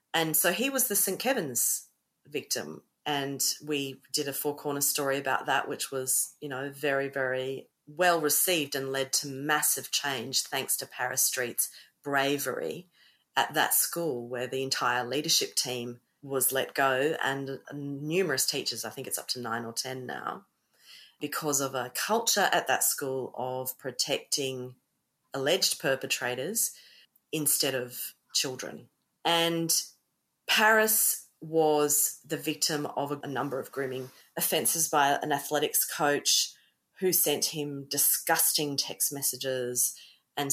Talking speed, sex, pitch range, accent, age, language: 140 wpm, female, 130-150 Hz, Australian, 40-59, English